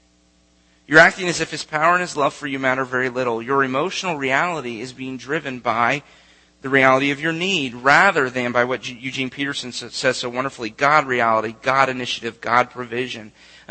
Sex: male